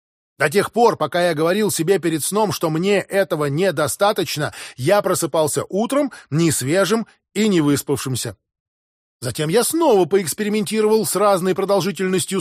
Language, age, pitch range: English, 20-39, 160-205 Hz